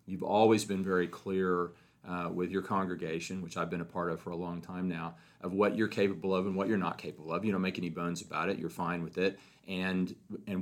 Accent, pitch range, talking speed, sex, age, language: American, 85-100 Hz, 250 wpm, male, 40-59, English